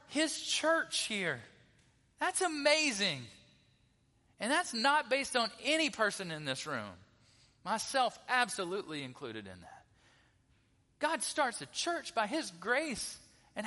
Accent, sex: American, male